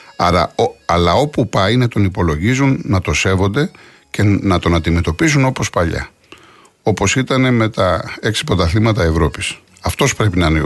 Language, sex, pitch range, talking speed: Greek, male, 90-125 Hz, 160 wpm